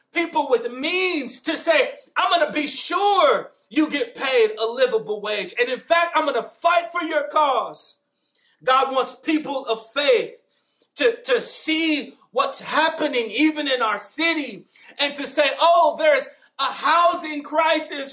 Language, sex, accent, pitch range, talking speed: English, male, American, 235-335 Hz, 160 wpm